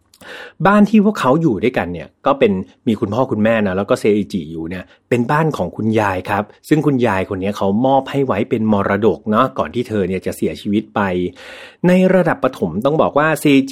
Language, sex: Thai, male